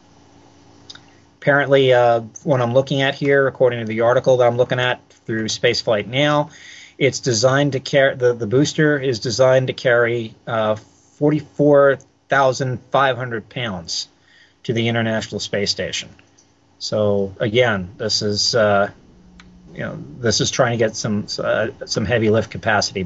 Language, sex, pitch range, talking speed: English, male, 105-135 Hz, 145 wpm